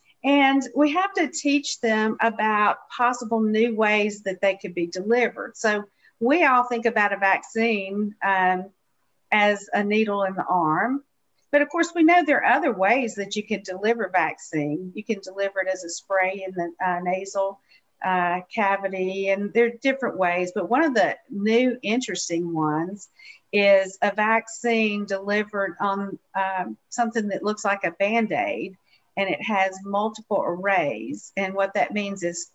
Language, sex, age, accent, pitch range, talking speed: English, female, 50-69, American, 190-230 Hz, 165 wpm